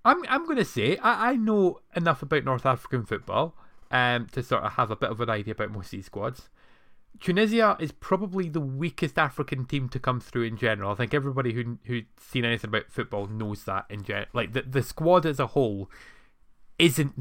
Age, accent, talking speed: 20-39, British, 215 wpm